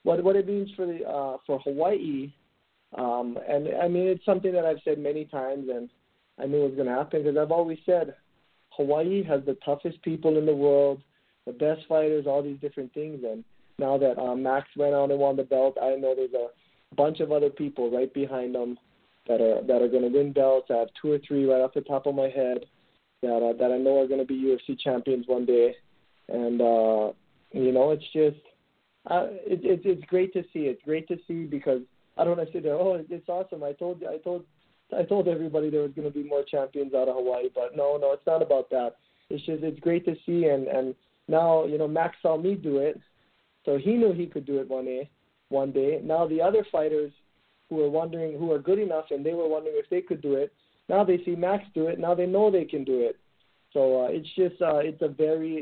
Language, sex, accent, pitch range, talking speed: English, male, American, 135-165 Hz, 235 wpm